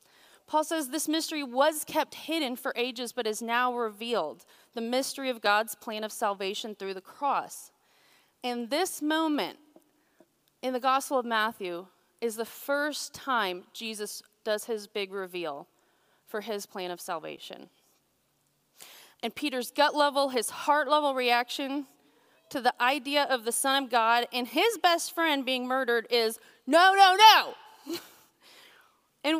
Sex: female